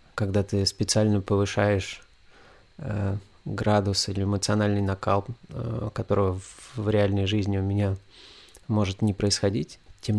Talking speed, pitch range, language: 125 wpm, 100-110 Hz, Russian